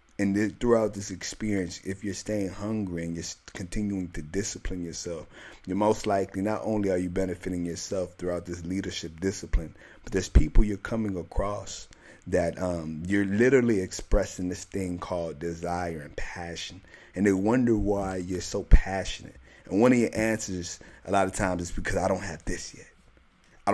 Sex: male